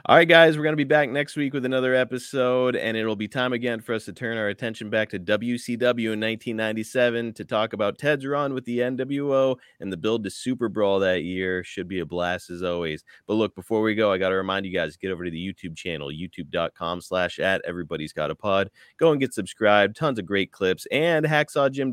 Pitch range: 90-120 Hz